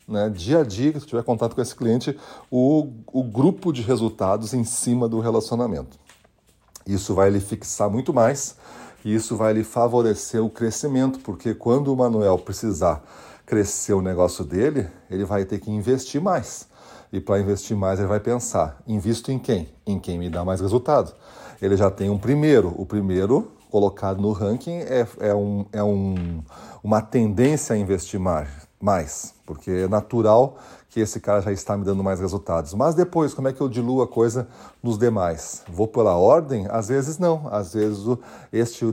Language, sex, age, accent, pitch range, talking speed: Portuguese, male, 40-59, Brazilian, 95-120 Hz, 180 wpm